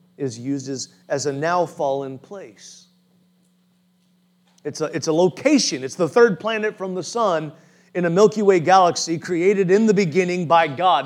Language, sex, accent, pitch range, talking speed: English, male, American, 155-190 Hz, 165 wpm